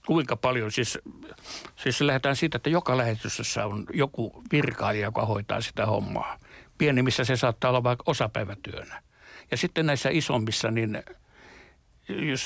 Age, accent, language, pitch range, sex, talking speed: 60-79, native, Finnish, 115-135 Hz, male, 135 wpm